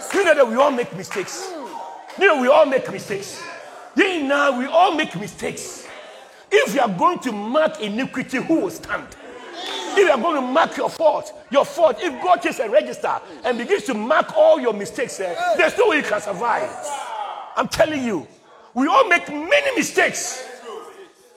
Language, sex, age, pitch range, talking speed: English, male, 40-59, 245-355 Hz, 175 wpm